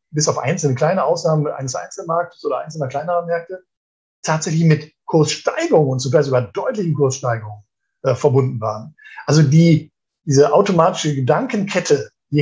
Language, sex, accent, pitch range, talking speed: German, male, German, 130-175 Hz, 135 wpm